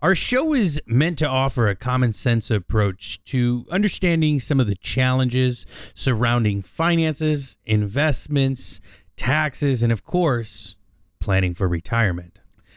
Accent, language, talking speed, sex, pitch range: American, English, 120 wpm, male, 105-145 Hz